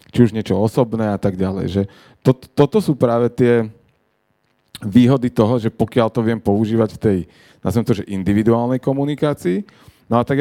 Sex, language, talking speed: male, Slovak, 165 wpm